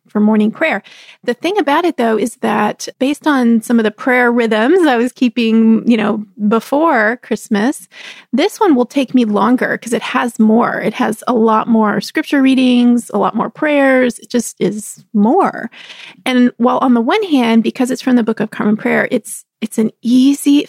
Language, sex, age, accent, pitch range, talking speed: English, female, 30-49, American, 220-265 Hz, 195 wpm